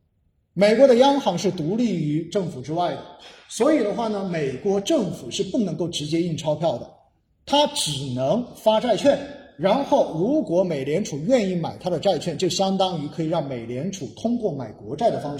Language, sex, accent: Chinese, male, native